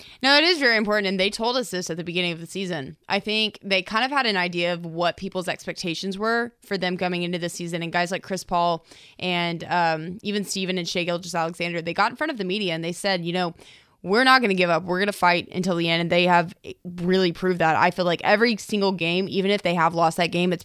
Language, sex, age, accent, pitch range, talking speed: English, female, 20-39, American, 175-210 Hz, 270 wpm